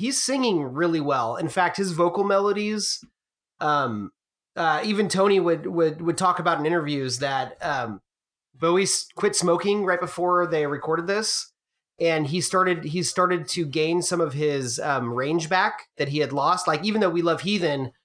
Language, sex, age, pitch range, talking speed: English, male, 30-49, 150-185 Hz, 175 wpm